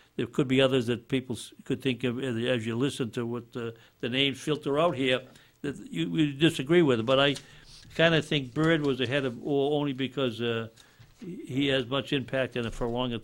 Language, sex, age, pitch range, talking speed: English, male, 60-79, 115-140 Hz, 215 wpm